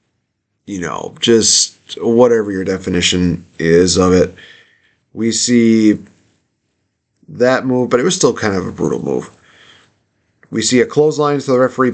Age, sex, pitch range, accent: 30-49, male, 105-125 Hz, American